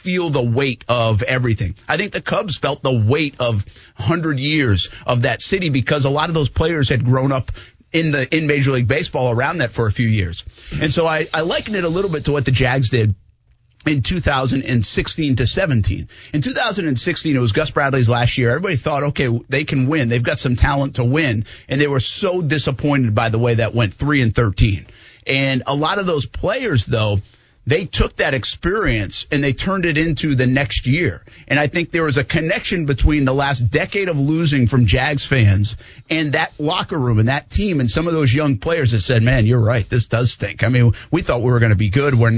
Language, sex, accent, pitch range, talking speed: English, male, American, 115-150 Hz, 220 wpm